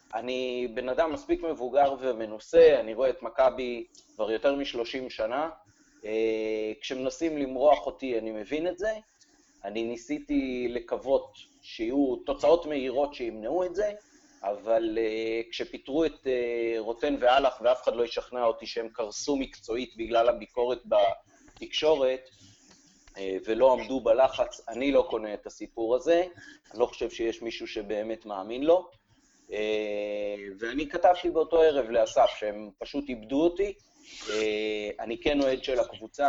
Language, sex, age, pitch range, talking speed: Hebrew, male, 30-49, 110-160 Hz, 130 wpm